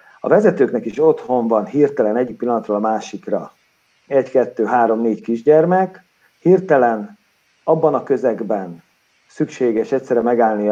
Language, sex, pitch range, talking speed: Hungarian, male, 105-145 Hz, 125 wpm